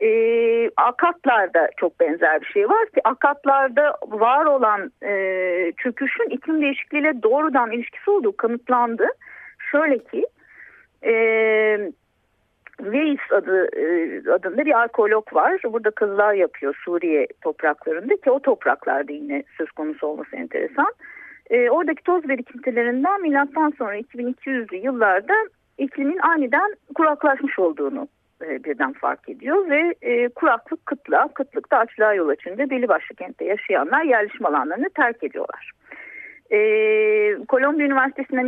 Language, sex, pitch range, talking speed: Turkish, female, 235-390 Hz, 120 wpm